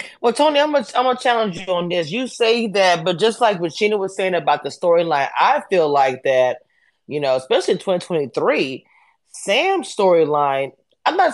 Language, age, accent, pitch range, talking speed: English, 20-39, American, 160-225 Hz, 190 wpm